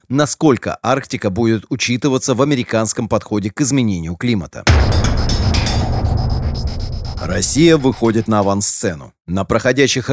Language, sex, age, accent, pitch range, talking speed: Russian, male, 30-49, native, 110-135 Hz, 95 wpm